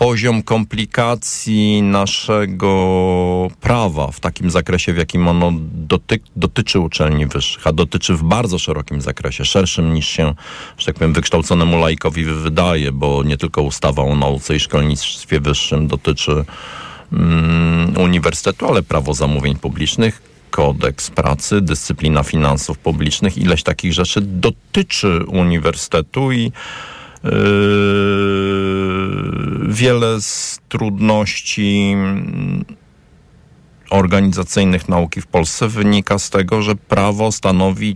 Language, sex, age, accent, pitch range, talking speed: Polish, male, 50-69, native, 80-110 Hz, 105 wpm